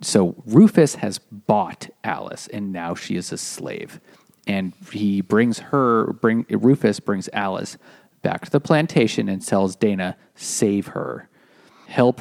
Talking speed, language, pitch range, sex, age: 145 wpm, English, 95-115 Hz, male, 30-49